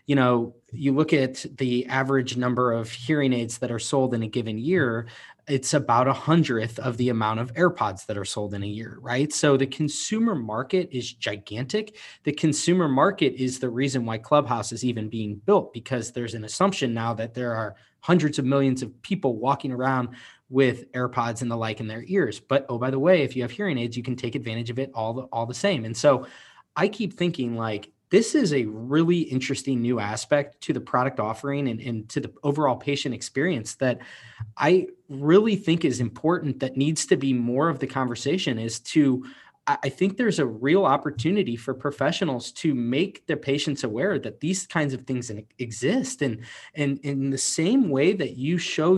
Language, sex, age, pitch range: English, male, 20-39, 120-150 Hz